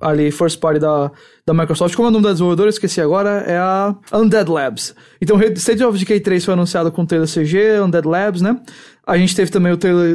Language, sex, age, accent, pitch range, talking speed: English, male, 20-39, Brazilian, 165-210 Hz, 220 wpm